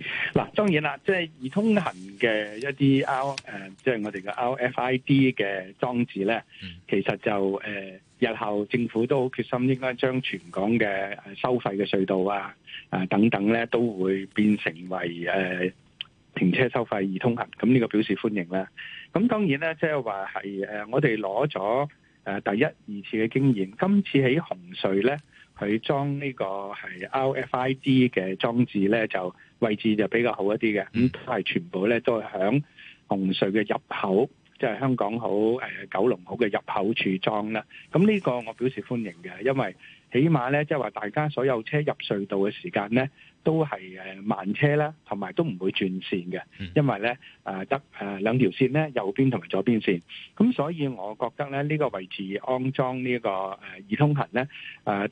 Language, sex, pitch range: Chinese, male, 100-135 Hz